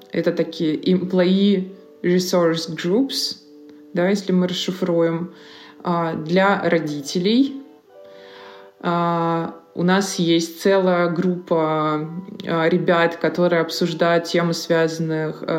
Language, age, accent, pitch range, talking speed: Russian, 20-39, native, 155-180 Hz, 80 wpm